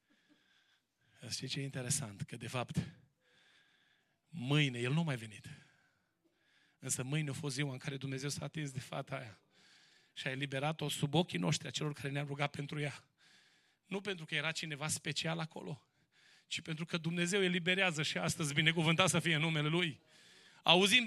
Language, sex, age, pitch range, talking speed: English, male, 30-49, 140-175 Hz, 170 wpm